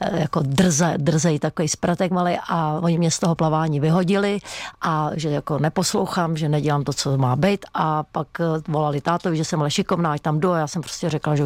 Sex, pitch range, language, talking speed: female, 155-180 Hz, Czech, 210 wpm